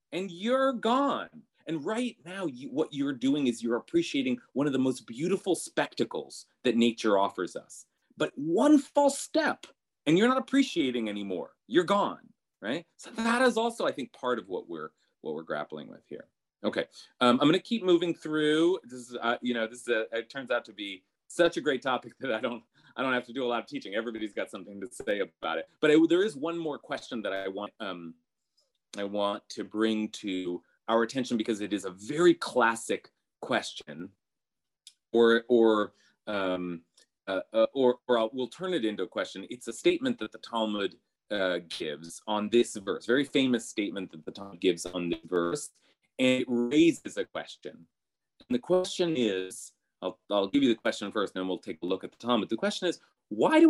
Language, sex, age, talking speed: English, male, 30-49, 195 wpm